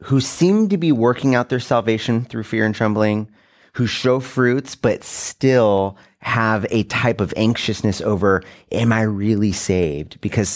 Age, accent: 30-49, American